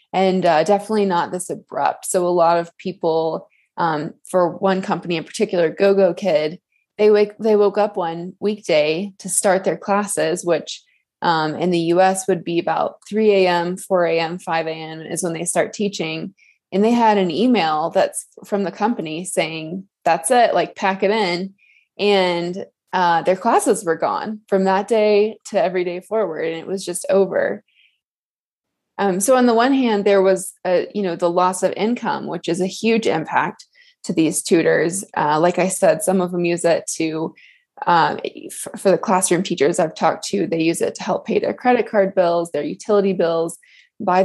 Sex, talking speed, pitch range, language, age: female, 185 wpm, 170-210 Hz, English, 20-39